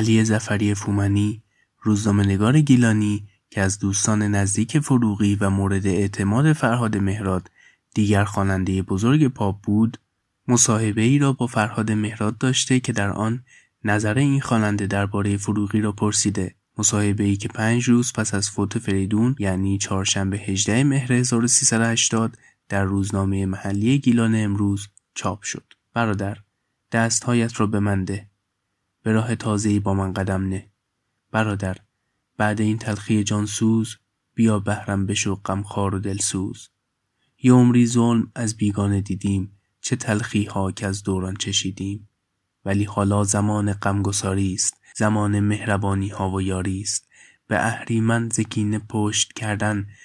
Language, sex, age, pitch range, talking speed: Persian, male, 20-39, 100-115 Hz, 135 wpm